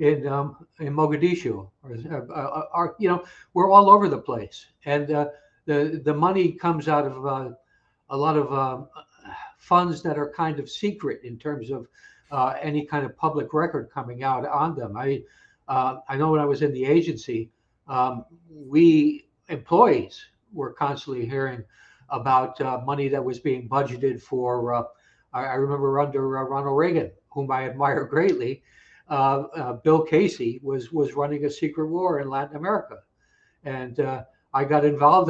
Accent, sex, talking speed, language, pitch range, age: American, male, 170 wpm, English, 135-160 Hz, 60-79